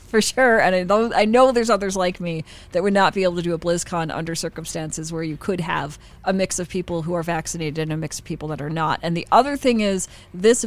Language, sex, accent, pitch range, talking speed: English, female, American, 165-205 Hz, 260 wpm